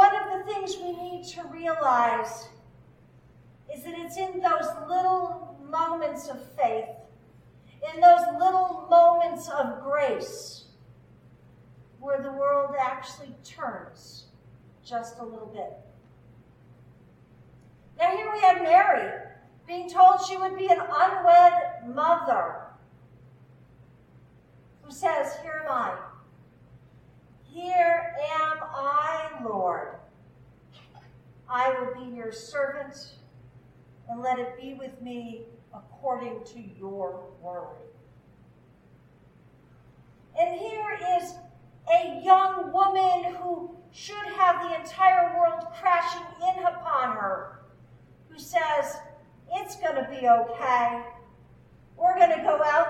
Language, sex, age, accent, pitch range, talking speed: English, female, 50-69, American, 240-355 Hz, 105 wpm